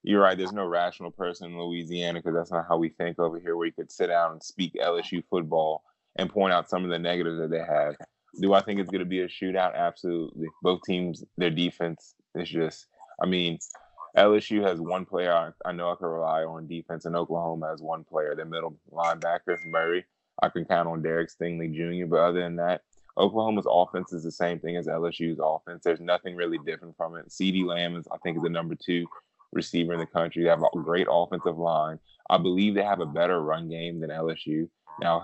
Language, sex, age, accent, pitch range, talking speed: English, male, 20-39, American, 80-90 Hz, 225 wpm